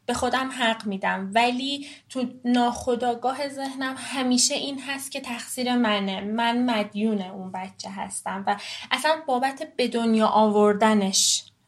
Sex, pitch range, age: female, 215-260 Hz, 20-39